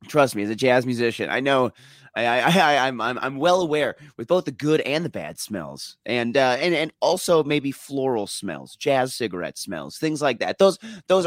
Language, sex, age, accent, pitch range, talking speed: English, male, 30-49, American, 125-165 Hz, 210 wpm